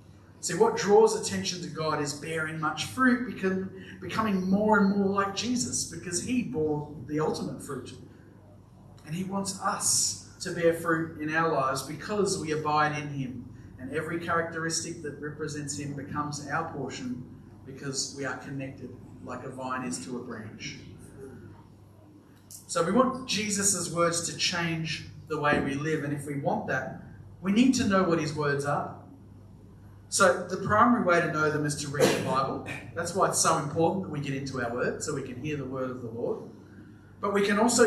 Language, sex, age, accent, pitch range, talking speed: English, male, 40-59, Australian, 130-175 Hz, 185 wpm